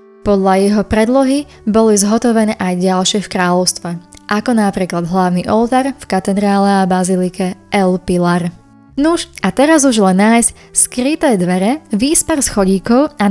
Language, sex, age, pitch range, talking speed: Slovak, female, 20-39, 185-240 Hz, 135 wpm